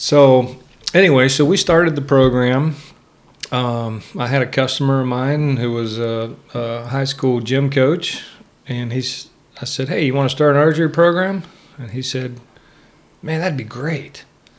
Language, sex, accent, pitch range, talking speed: English, male, American, 120-145 Hz, 165 wpm